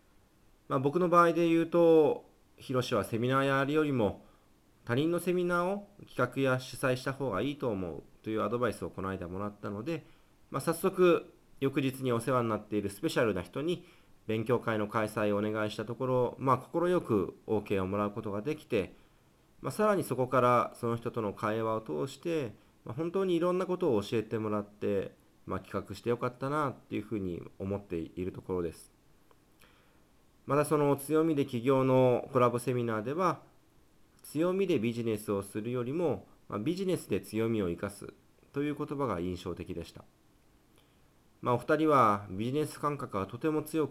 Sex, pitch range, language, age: male, 105-150 Hz, Japanese, 40-59